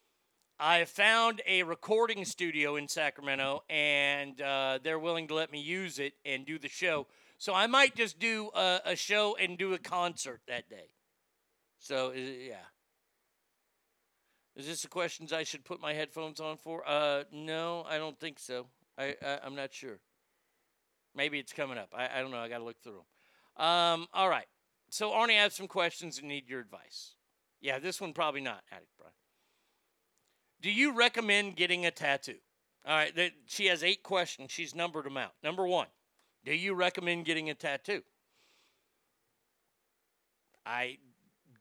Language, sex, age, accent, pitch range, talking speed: English, male, 50-69, American, 145-200 Hz, 175 wpm